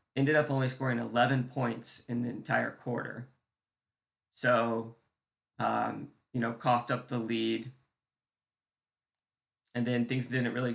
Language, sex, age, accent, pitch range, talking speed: English, male, 20-39, American, 115-130 Hz, 130 wpm